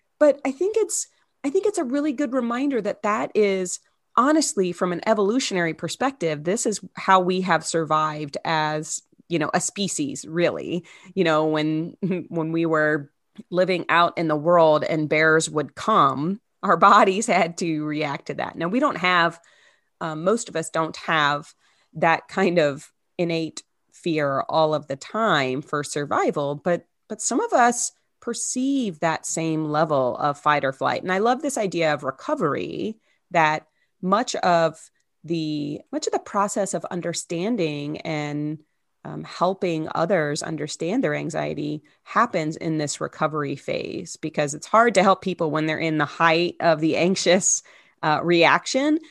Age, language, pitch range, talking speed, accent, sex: 30-49, English, 155-205 Hz, 160 wpm, American, female